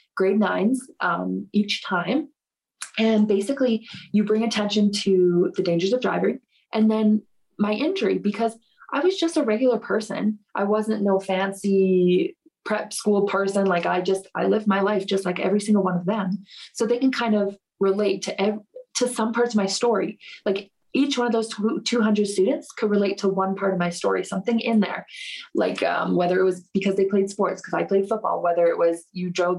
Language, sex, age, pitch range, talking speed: English, female, 20-39, 185-220 Hz, 195 wpm